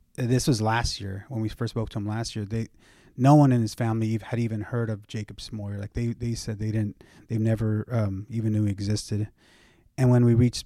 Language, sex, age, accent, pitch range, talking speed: English, male, 30-49, American, 105-120 Hz, 230 wpm